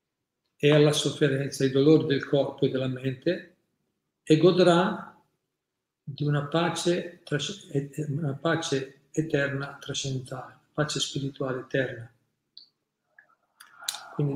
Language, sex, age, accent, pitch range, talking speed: Italian, male, 50-69, native, 140-160 Hz, 95 wpm